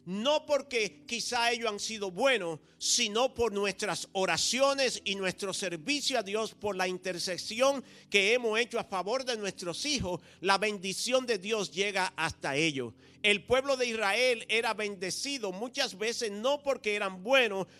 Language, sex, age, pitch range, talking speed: English, male, 50-69, 185-235 Hz, 155 wpm